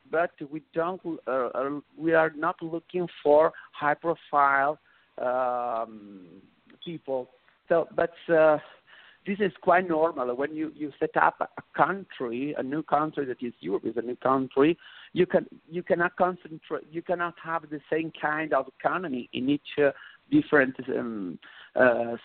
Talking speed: 150 wpm